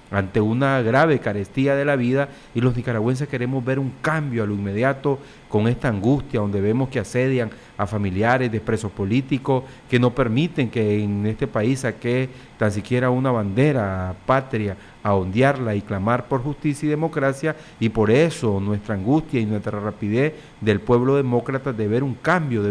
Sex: male